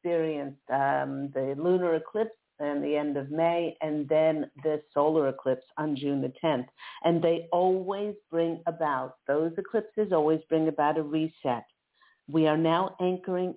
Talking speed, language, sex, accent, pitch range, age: 150 wpm, English, female, American, 145-175 Hz, 50-69